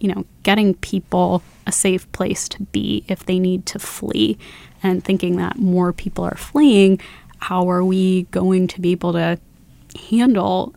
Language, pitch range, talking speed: English, 190-210 Hz, 165 wpm